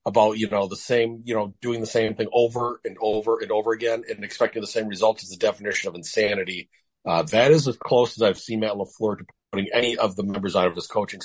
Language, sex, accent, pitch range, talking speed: English, male, American, 105-135 Hz, 250 wpm